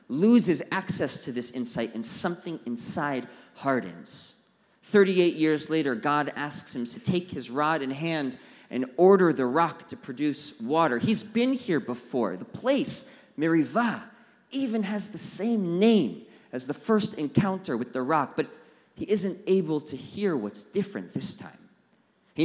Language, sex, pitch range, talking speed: English, male, 145-195 Hz, 155 wpm